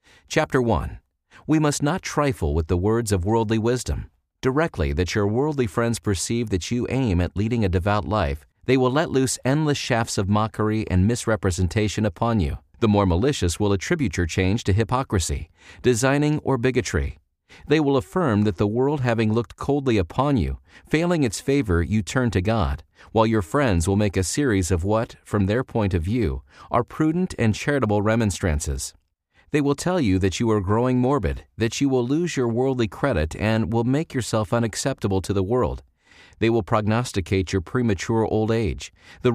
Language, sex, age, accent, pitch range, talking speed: English, male, 40-59, American, 95-130 Hz, 180 wpm